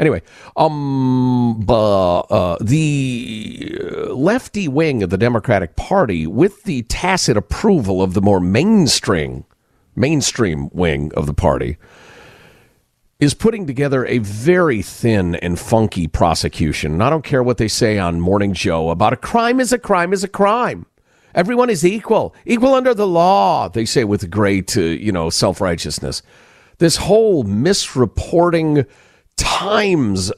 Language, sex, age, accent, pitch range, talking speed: English, male, 50-69, American, 100-170 Hz, 140 wpm